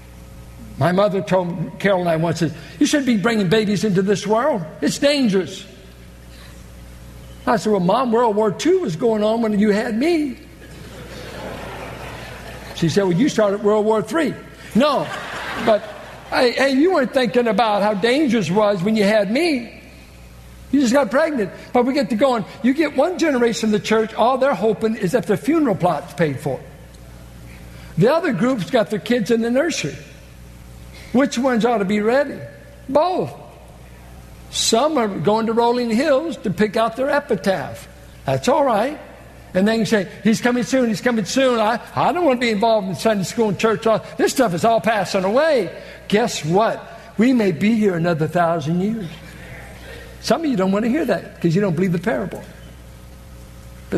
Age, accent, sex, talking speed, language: 60-79, American, male, 180 wpm, English